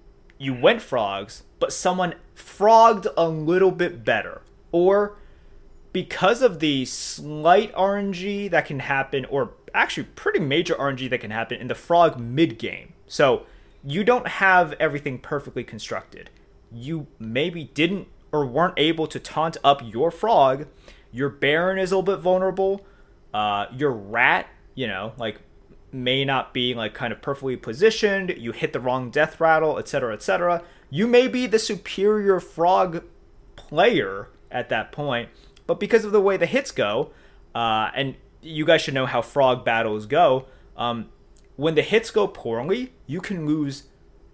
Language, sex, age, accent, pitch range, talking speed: English, male, 20-39, American, 120-180 Hz, 155 wpm